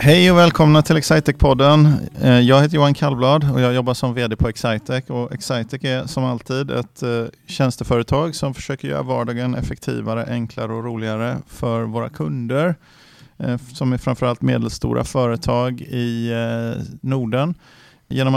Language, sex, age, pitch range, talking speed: Swedish, male, 30-49, 115-135 Hz, 135 wpm